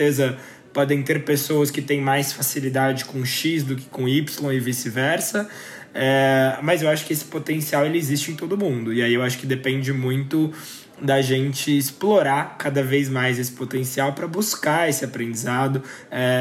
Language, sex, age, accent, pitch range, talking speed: Portuguese, male, 20-39, Brazilian, 125-155 Hz, 170 wpm